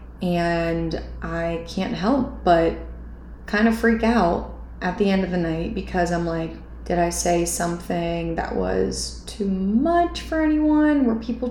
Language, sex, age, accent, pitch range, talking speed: English, female, 20-39, American, 175-230 Hz, 155 wpm